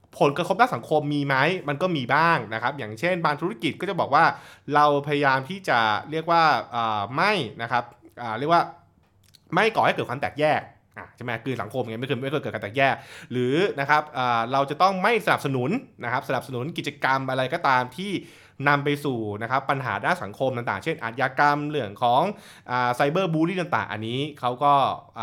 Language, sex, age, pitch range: Thai, male, 20-39, 115-155 Hz